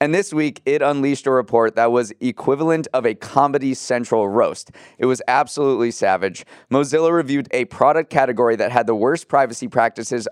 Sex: male